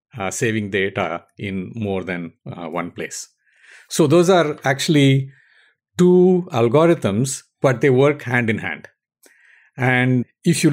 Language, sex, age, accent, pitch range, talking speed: English, male, 50-69, Indian, 100-135 Hz, 135 wpm